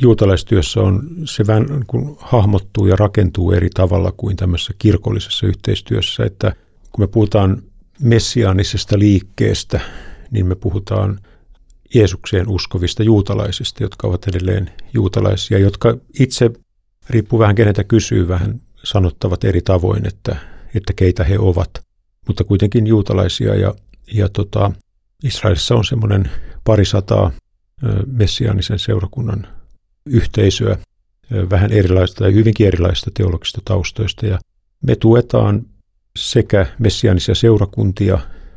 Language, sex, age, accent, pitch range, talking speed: Finnish, male, 50-69, native, 95-110 Hz, 105 wpm